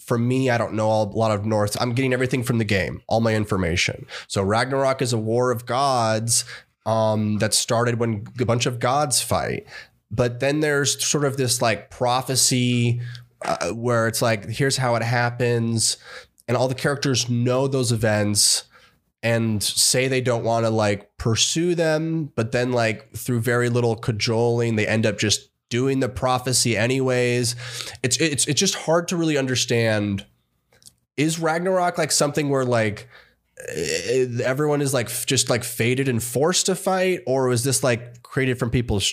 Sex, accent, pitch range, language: male, American, 115-135 Hz, English